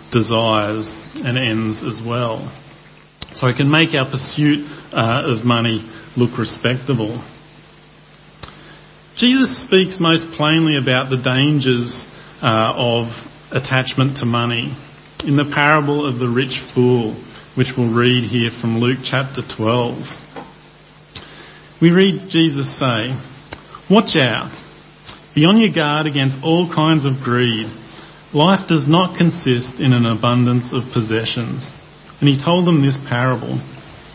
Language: English